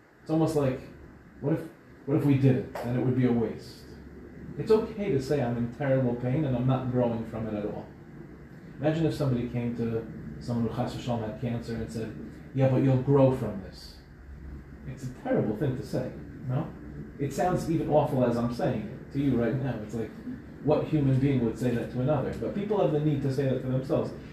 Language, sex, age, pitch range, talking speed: English, male, 30-49, 110-145 Hz, 225 wpm